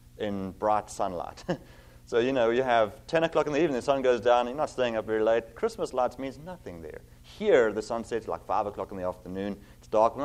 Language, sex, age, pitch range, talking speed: English, male, 30-49, 90-130 Hz, 245 wpm